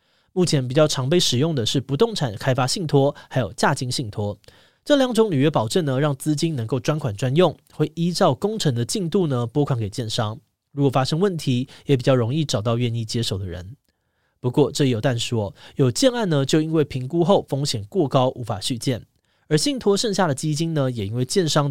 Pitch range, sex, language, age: 120-165 Hz, male, Chinese, 20-39